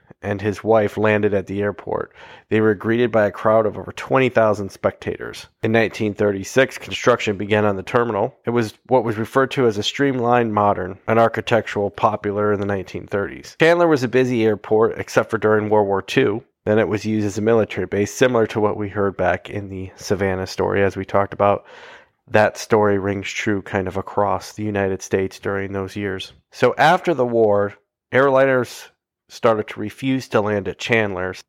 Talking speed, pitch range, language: 185 wpm, 100-115 Hz, English